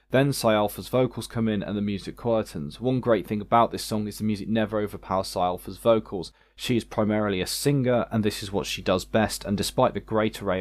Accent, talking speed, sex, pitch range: British, 230 wpm, male, 95-110 Hz